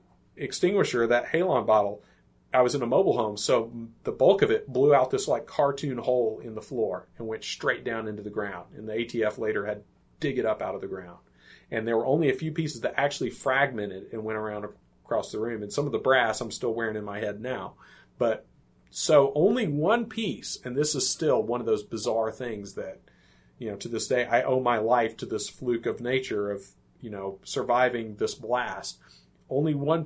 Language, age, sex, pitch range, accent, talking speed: English, 30-49, male, 105-135 Hz, American, 215 wpm